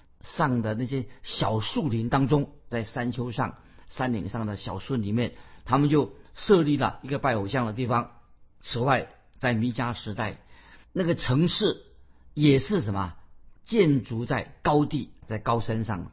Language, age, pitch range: Chinese, 50-69, 110-145 Hz